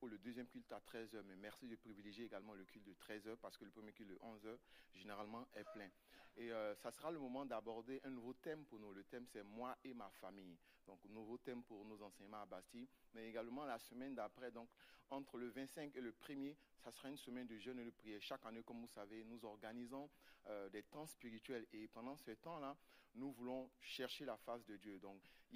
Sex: male